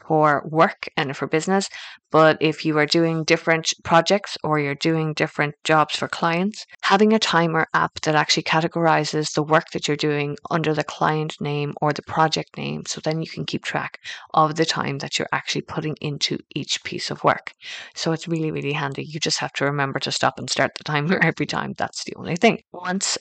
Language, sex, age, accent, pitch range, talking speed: English, female, 20-39, Irish, 155-185 Hz, 205 wpm